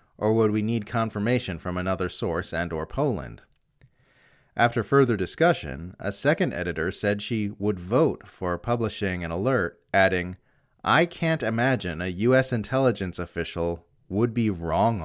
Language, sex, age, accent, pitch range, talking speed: English, male, 30-49, American, 95-130 Hz, 145 wpm